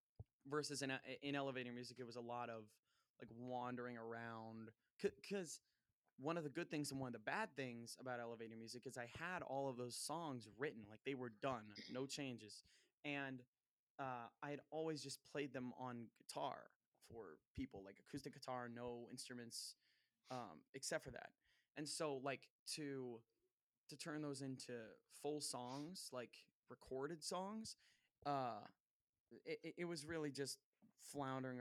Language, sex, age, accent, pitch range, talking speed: English, male, 20-39, American, 120-140 Hz, 160 wpm